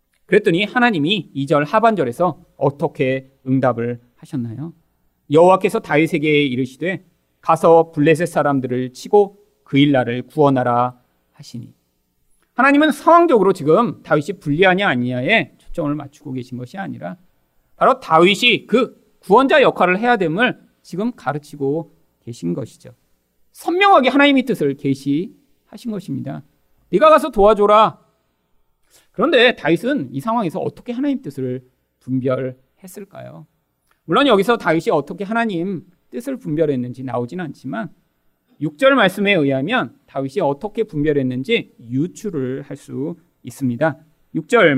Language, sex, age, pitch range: Korean, male, 40-59, 130-190 Hz